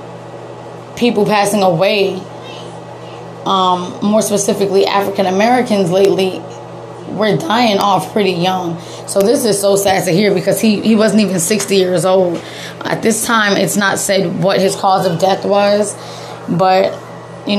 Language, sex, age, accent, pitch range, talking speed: English, female, 20-39, American, 185-205 Hz, 145 wpm